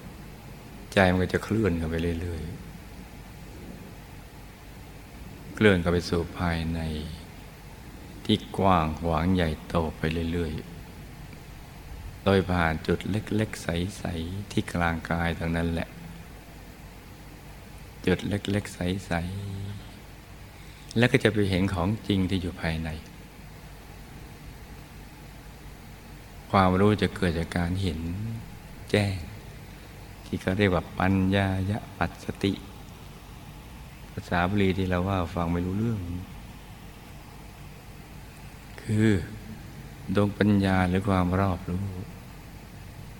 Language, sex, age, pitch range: Thai, male, 60-79, 85-100 Hz